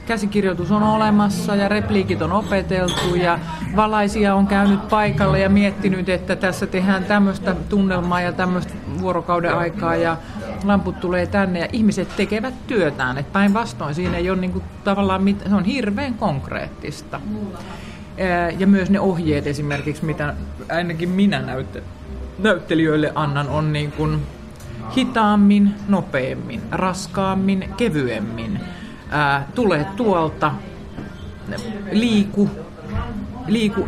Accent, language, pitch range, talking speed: native, Finnish, 155-200 Hz, 110 wpm